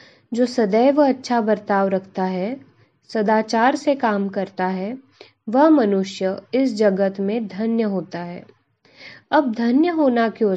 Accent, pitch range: native, 195-250 Hz